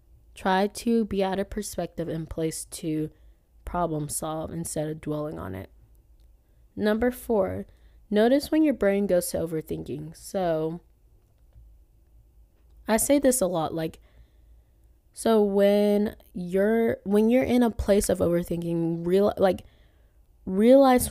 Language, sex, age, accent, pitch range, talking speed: English, female, 20-39, American, 155-195 Hz, 130 wpm